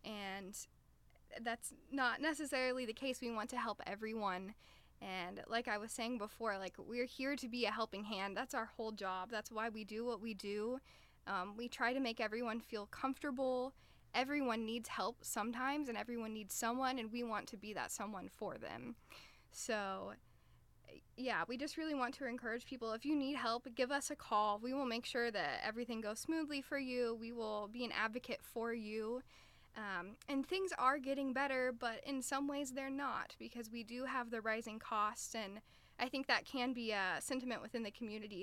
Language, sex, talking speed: English, female, 195 wpm